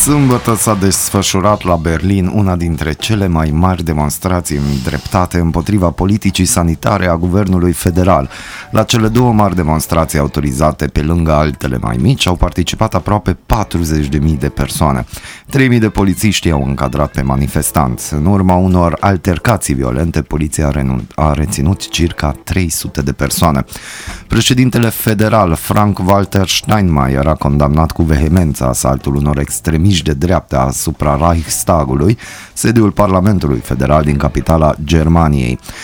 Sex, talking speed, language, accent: male, 125 wpm, Romanian, native